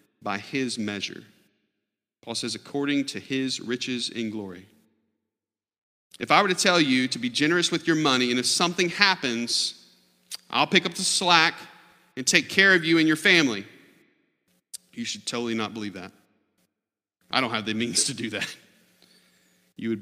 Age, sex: 40-59, male